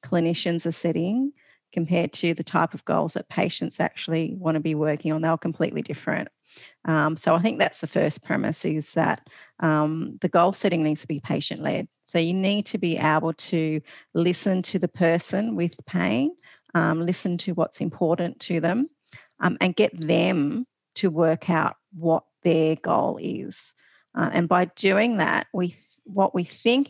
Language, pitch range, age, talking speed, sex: English, 165-190 Hz, 40-59, 180 wpm, female